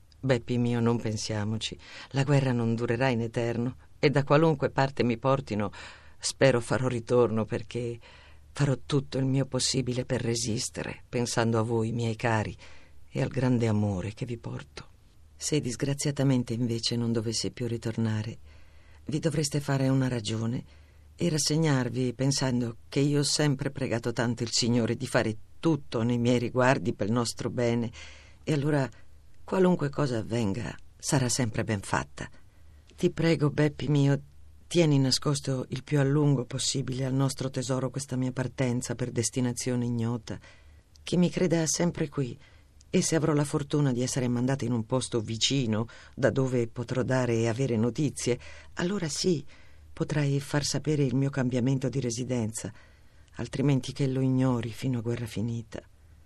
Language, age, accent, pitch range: Italian, 50-69, native, 110-135 Hz